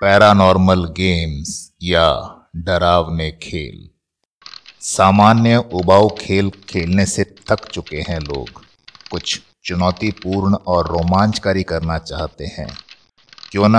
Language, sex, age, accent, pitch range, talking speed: Hindi, male, 60-79, native, 85-100 Hz, 100 wpm